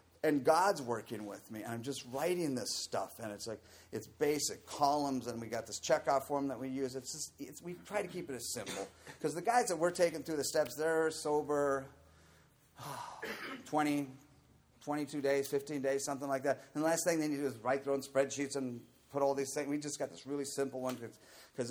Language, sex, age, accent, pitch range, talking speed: English, male, 40-59, American, 115-150 Hz, 225 wpm